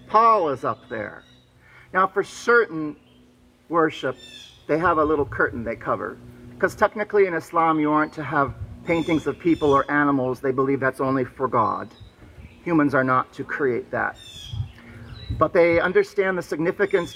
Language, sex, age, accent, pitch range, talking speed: English, male, 40-59, American, 110-180 Hz, 155 wpm